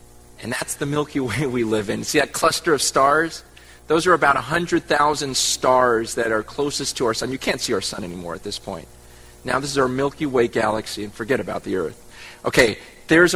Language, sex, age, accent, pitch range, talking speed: English, male, 30-49, American, 110-165 Hz, 210 wpm